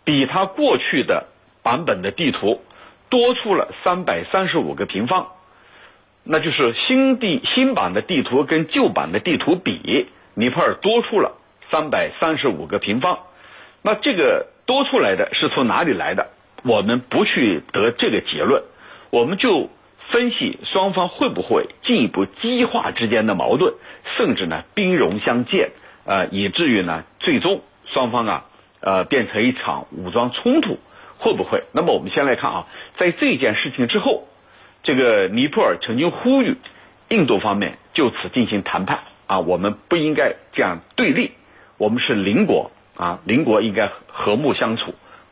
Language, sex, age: Chinese, male, 60-79